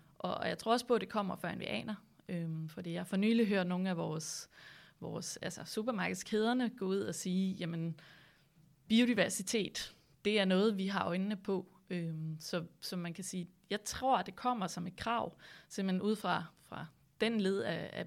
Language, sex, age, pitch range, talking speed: Danish, female, 20-39, 170-205 Hz, 195 wpm